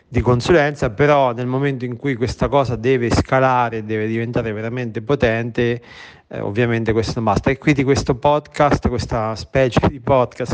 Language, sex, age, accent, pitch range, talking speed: Italian, male, 40-59, native, 115-135 Hz, 160 wpm